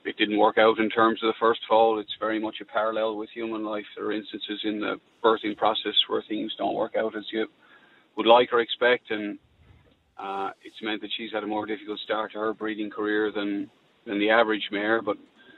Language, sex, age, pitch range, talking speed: English, male, 40-59, 110-115 Hz, 220 wpm